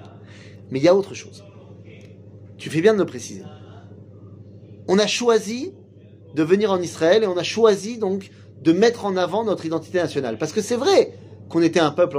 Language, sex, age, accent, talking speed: French, male, 30-49, French, 190 wpm